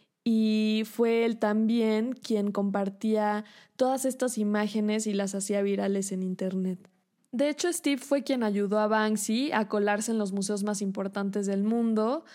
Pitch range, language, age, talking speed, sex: 200-225 Hz, Spanish, 20-39, 155 wpm, female